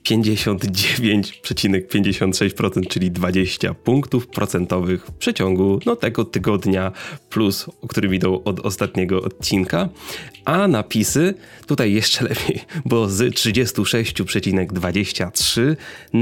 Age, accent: 20-39, native